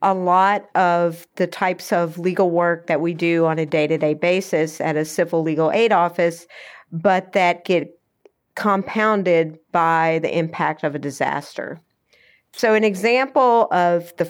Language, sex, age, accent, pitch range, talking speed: English, female, 40-59, American, 165-195 Hz, 150 wpm